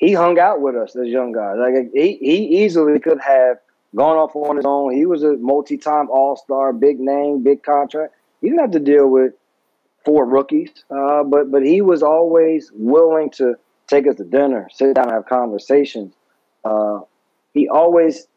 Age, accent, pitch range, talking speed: 30-49, American, 130-160 Hz, 185 wpm